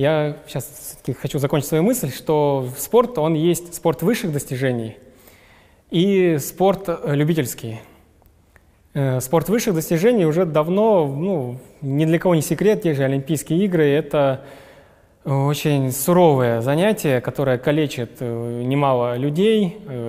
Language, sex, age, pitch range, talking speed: Russian, male, 20-39, 130-160 Hz, 115 wpm